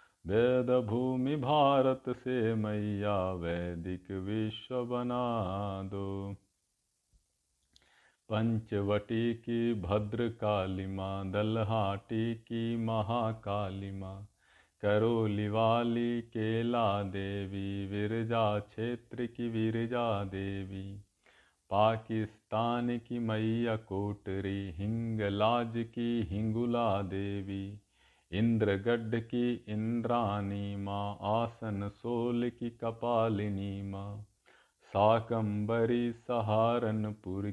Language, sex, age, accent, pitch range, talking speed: Hindi, male, 50-69, native, 100-115 Hz, 70 wpm